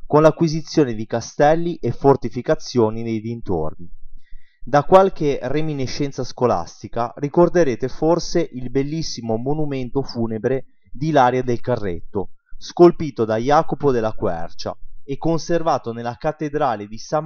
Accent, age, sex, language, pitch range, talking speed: native, 30-49, male, Italian, 115-150 Hz, 115 wpm